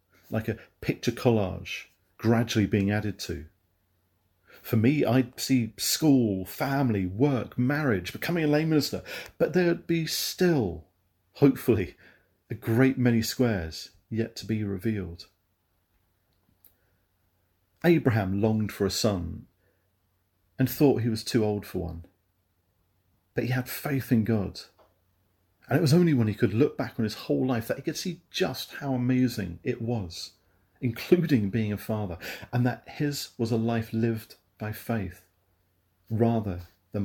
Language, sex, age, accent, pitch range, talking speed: English, male, 40-59, British, 95-120 Hz, 145 wpm